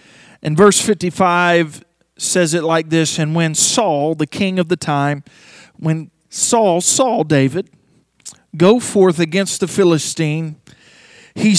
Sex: male